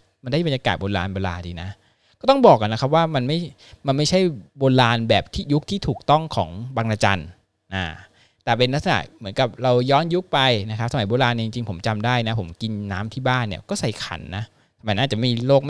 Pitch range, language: 95-125 Hz, Thai